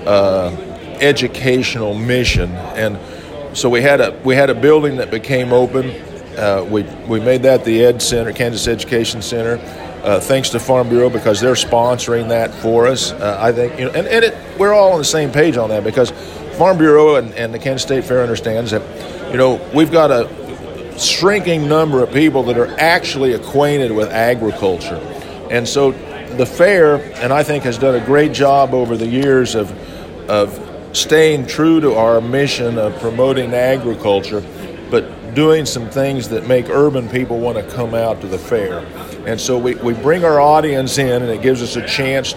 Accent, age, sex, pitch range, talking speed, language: American, 50-69, male, 110-135 Hz, 190 wpm, English